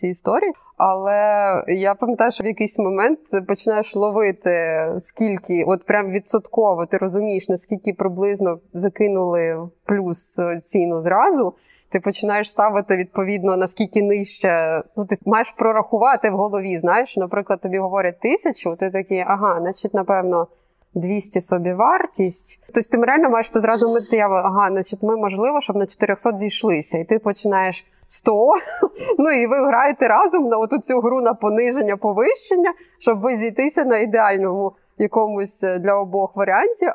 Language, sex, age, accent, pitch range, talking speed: Ukrainian, female, 20-39, native, 190-225 Hz, 140 wpm